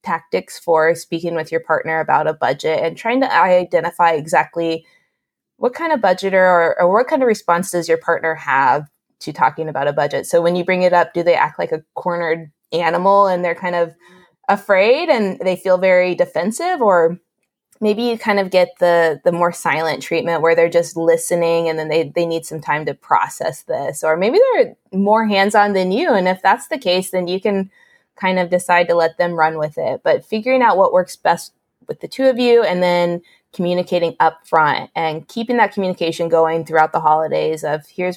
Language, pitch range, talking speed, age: English, 165-190 Hz, 205 wpm, 20-39